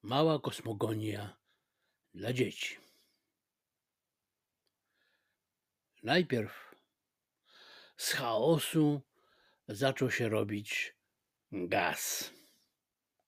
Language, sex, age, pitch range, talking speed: Polish, male, 60-79, 120-160 Hz, 50 wpm